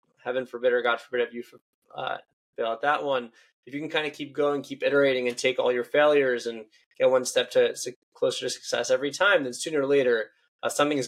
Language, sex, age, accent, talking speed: English, male, 20-39, American, 240 wpm